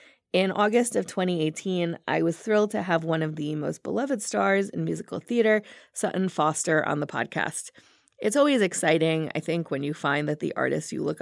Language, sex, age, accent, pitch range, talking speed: English, female, 30-49, American, 160-205 Hz, 195 wpm